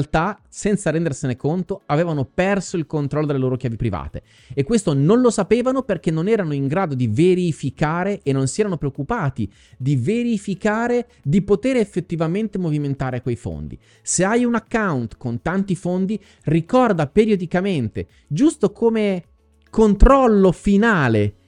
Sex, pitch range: male, 140-205 Hz